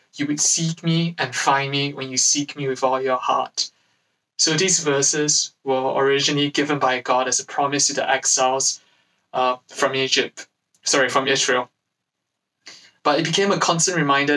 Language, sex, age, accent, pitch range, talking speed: English, male, 20-39, British, 135-165 Hz, 170 wpm